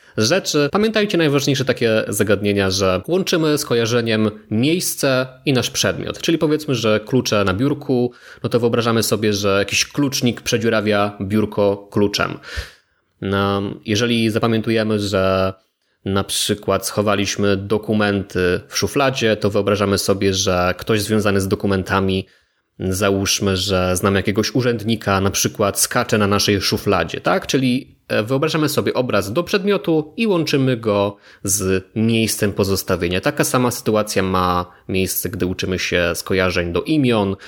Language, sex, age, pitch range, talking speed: Polish, male, 20-39, 95-130 Hz, 130 wpm